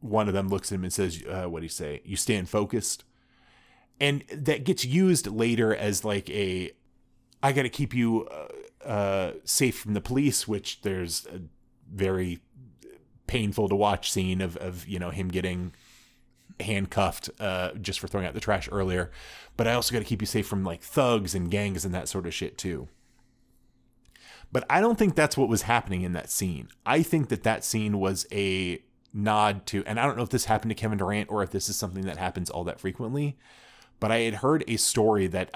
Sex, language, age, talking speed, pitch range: male, English, 30-49, 210 wpm, 95-115 Hz